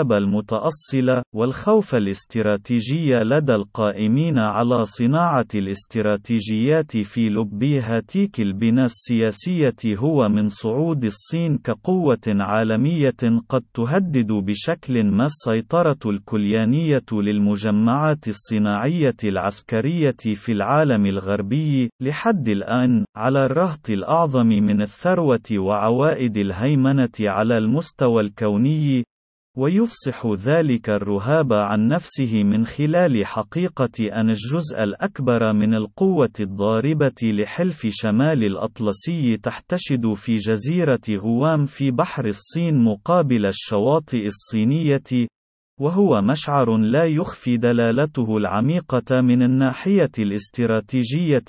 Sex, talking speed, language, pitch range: male, 90 wpm, Arabic, 110-145 Hz